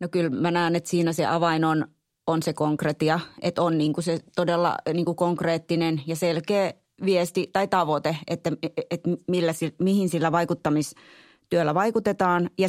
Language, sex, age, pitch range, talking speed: Finnish, female, 30-49, 155-175 Hz, 165 wpm